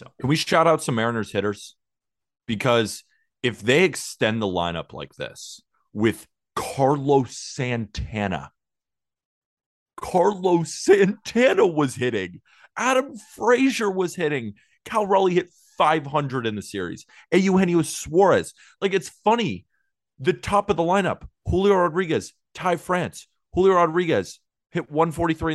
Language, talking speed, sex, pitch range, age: English, 120 wpm, male, 120-180 Hz, 30-49